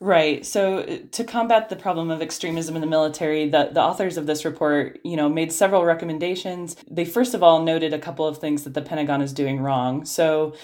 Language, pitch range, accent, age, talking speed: English, 150-170 Hz, American, 20-39, 215 wpm